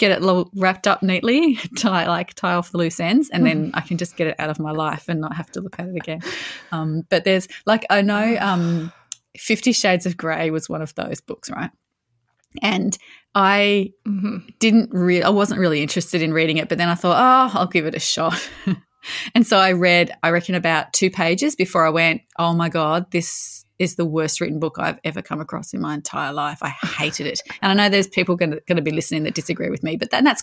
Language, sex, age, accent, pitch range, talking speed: English, female, 20-39, Australian, 165-220 Hz, 235 wpm